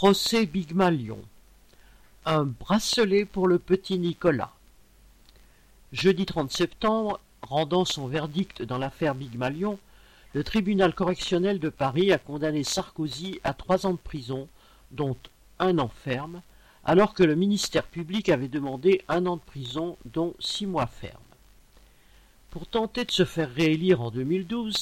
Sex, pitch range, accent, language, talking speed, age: male, 135-185 Hz, French, French, 140 wpm, 50-69